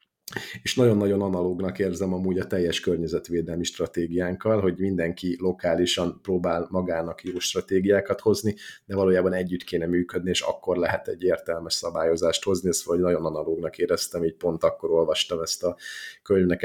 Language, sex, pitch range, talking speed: Hungarian, male, 85-100 Hz, 150 wpm